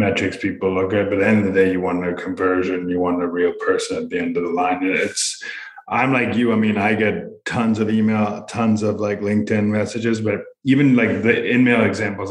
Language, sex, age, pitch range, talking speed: English, male, 30-49, 95-110 Hz, 240 wpm